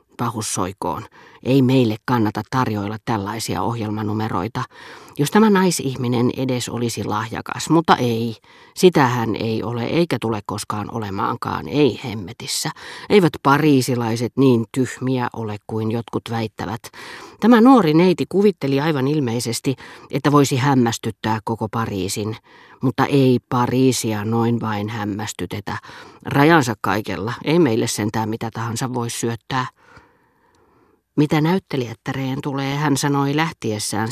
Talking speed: 115 wpm